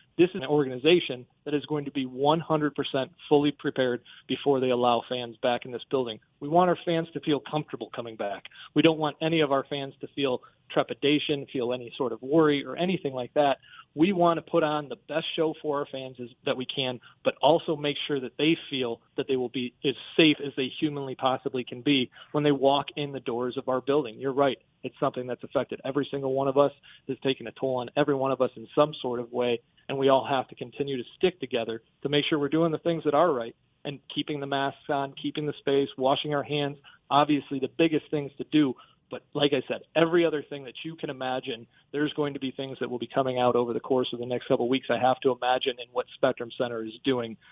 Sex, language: male, English